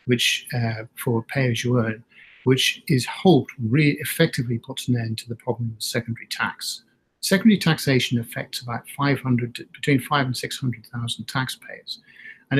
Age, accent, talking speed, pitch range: 50-69, British, 150 wpm, 115-135 Hz